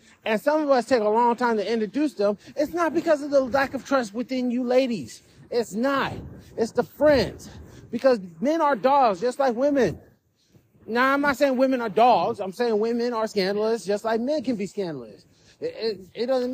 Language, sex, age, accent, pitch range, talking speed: English, male, 30-49, American, 205-265 Hz, 200 wpm